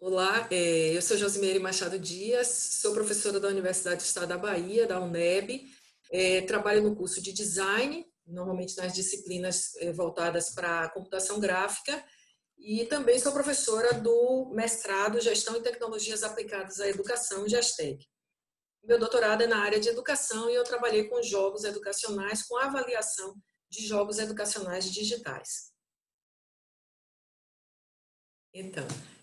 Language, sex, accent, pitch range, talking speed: Portuguese, female, Brazilian, 195-245 Hz, 125 wpm